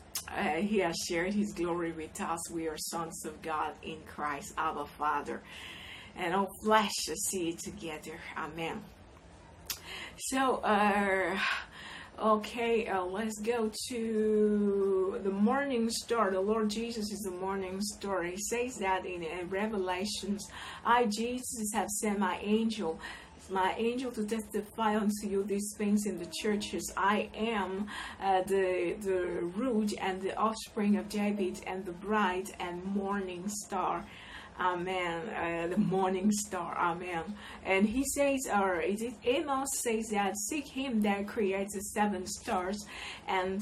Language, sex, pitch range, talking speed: English, female, 185-215 Hz, 145 wpm